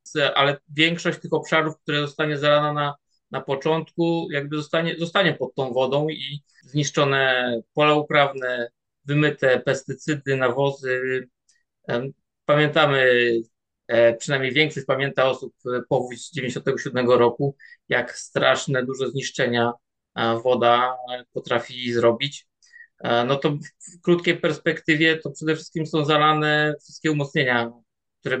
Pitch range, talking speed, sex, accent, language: 130-155 Hz, 110 wpm, male, native, Polish